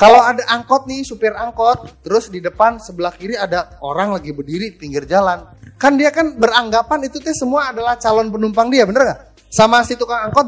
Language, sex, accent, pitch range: Indonesian, male, native, 210-280 Hz